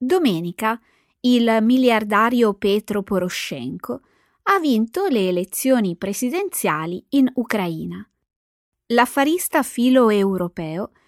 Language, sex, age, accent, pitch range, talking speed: Italian, female, 20-39, native, 185-275 Hz, 75 wpm